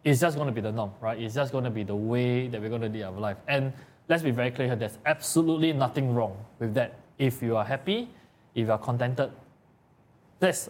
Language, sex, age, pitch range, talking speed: English, male, 20-39, 110-130 Hz, 240 wpm